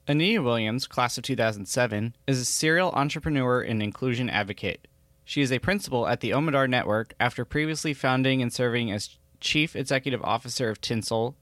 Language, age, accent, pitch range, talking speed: English, 20-39, American, 115-140 Hz, 165 wpm